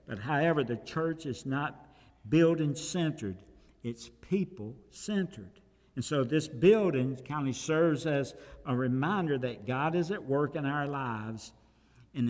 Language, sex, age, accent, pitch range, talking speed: English, male, 60-79, American, 120-150 Hz, 135 wpm